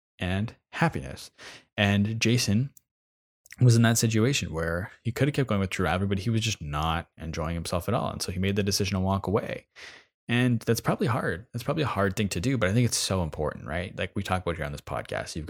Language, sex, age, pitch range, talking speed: English, male, 20-39, 85-115 Hz, 235 wpm